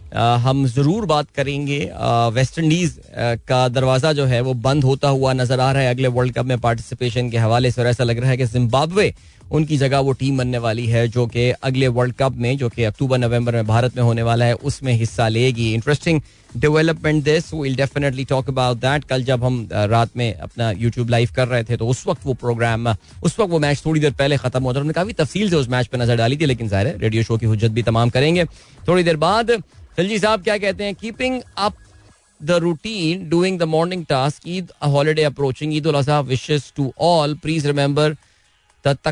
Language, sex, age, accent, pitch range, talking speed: Hindi, male, 20-39, native, 120-155 Hz, 180 wpm